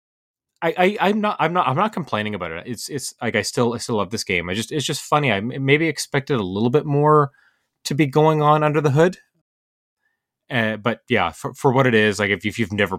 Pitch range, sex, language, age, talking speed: 95-125 Hz, male, English, 30-49, 250 wpm